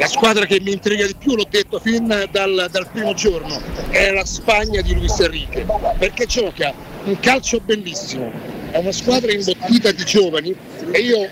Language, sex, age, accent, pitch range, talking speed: Italian, male, 50-69, native, 185-220 Hz, 175 wpm